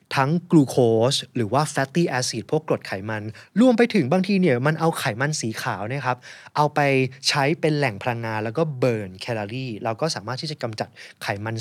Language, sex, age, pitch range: Thai, male, 20-39, 115-155 Hz